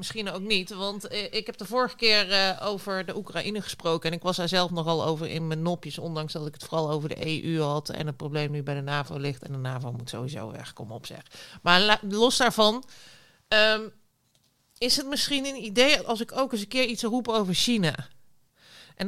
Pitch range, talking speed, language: 160-220 Hz, 220 wpm, Dutch